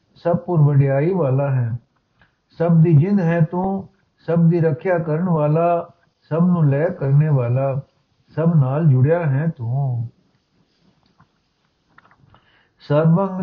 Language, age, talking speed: Punjabi, 60-79, 105 wpm